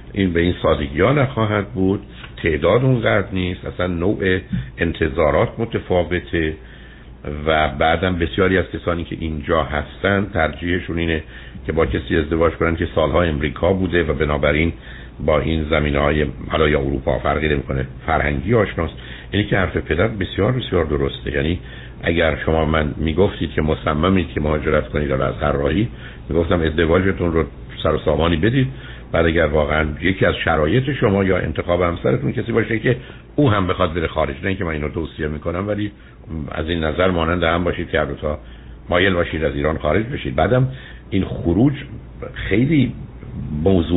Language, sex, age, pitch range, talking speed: Persian, male, 60-79, 75-95 Hz, 150 wpm